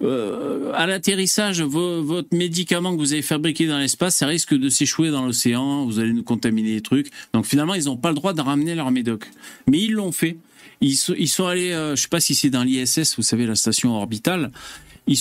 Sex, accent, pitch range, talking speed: male, French, 115-175 Hz, 215 wpm